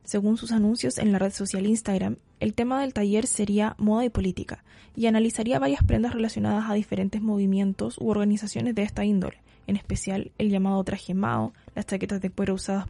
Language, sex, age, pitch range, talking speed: Spanish, female, 10-29, 190-220 Hz, 185 wpm